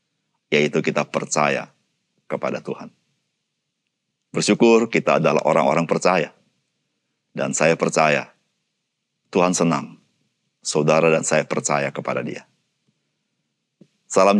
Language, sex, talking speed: Indonesian, male, 90 wpm